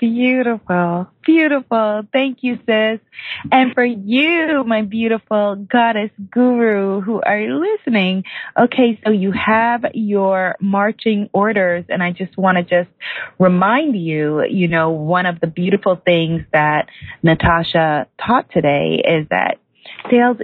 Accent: American